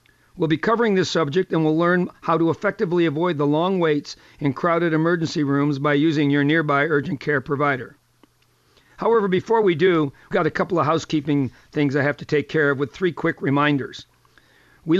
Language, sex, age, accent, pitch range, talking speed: English, male, 50-69, American, 150-180 Hz, 190 wpm